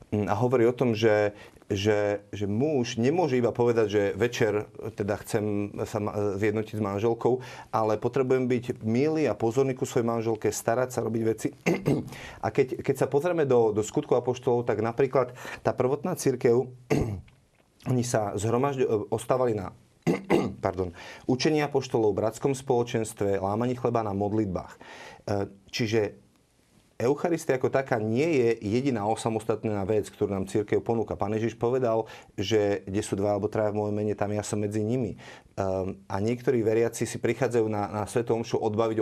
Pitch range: 105-125 Hz